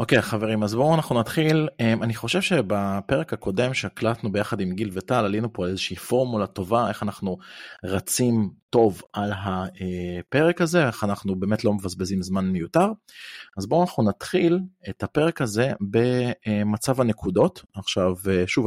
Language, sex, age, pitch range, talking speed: Hebrew, male, 30-49, 95-115 Hz, 150 wpm